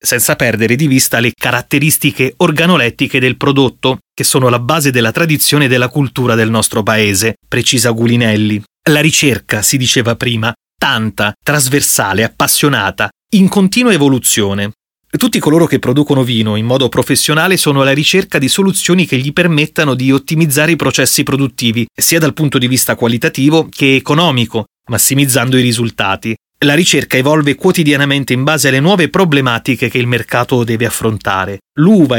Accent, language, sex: native, Italian, male